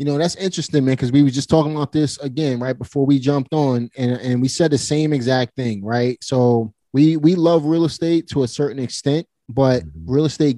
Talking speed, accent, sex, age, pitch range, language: 225 wpm, American, male, 30-49, 115-140 Hz, English